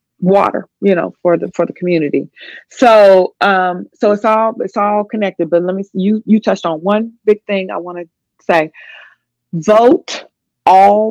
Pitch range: 180-240 Hz